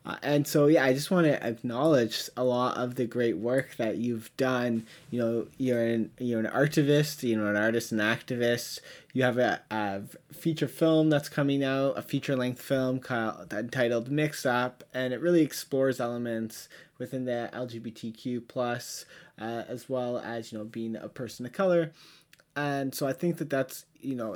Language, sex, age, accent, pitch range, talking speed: English, male, 20-39, American, 115-145 Hz, 185 wpm